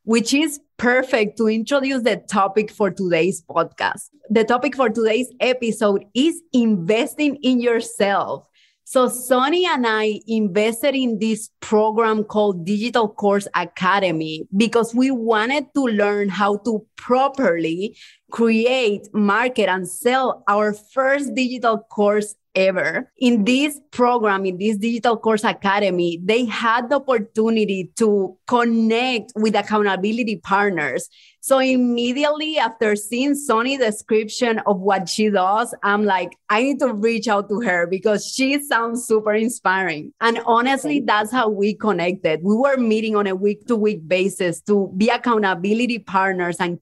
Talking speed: 140 wpm